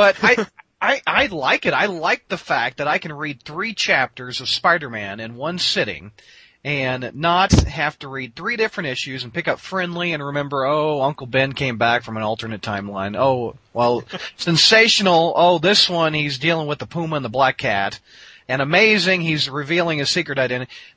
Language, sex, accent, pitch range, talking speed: English, male, American, 115-165 Hz, 190 wpm